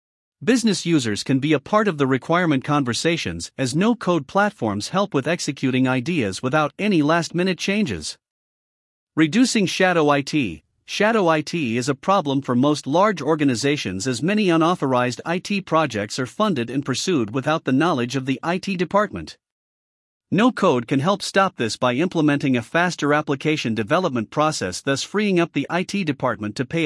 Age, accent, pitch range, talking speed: 50-69, American, 130-180 Hz, 155 wpm